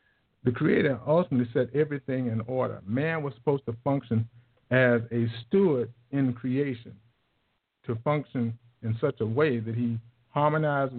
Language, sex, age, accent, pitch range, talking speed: English, male, 50-69, American, 110-130 Hz, 140 wpm